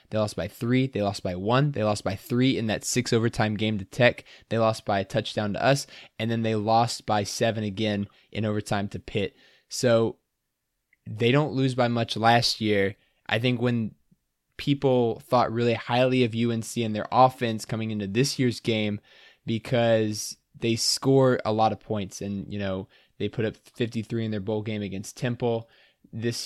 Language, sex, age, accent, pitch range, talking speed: English, male, 20-39, American, 105-120 Hz, 190 wpm